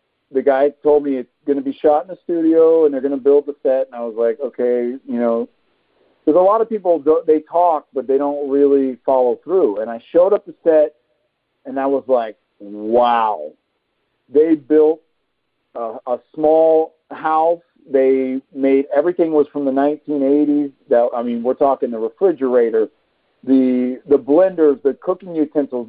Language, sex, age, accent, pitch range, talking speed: English, male, 50-69, American, 130-155 Hz, 175 wpm